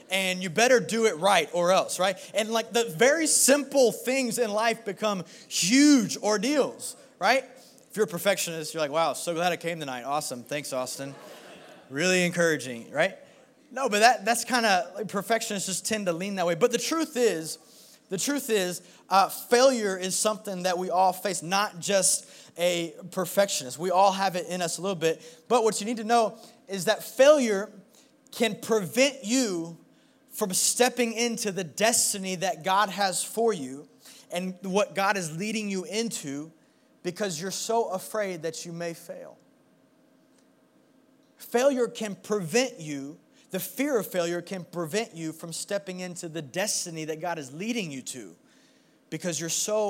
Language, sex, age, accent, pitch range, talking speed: English, male, 20-39, American, 170-225 Hz, 170 wpm